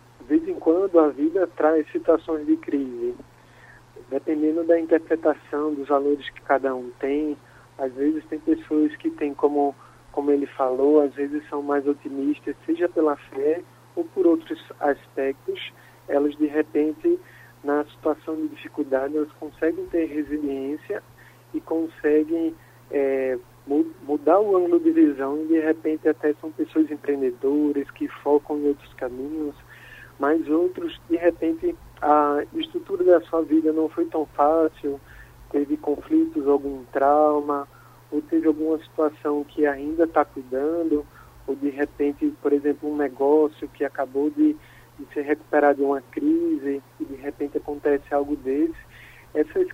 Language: Portuguese